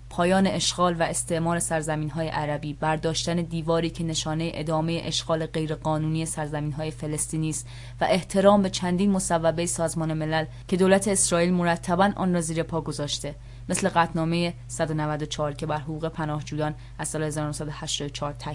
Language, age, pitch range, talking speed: English, 20-39, 150-175 Hz, 140 wpm